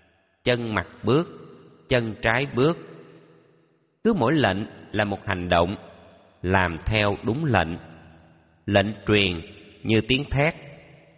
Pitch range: 90-120 Hz